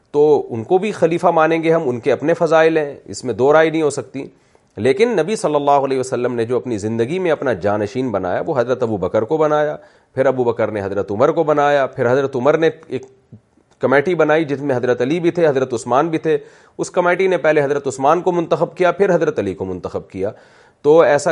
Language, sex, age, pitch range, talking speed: Urdu, male, 40-59, 130-175 Hz, 230 wpm